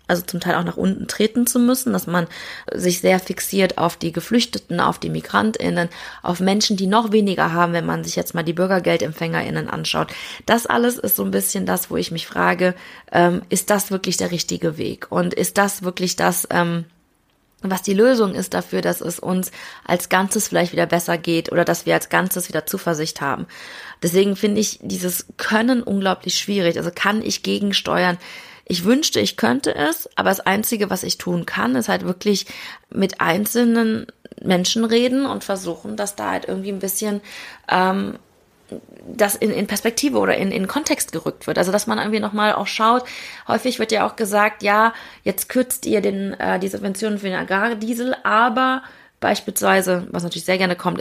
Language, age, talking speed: German, 20-39, 185 wpm